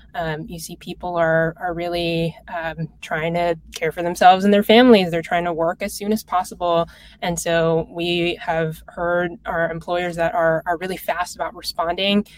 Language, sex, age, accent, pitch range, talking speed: English, female, 20-39, American, 165-190 Hz, 185 wpm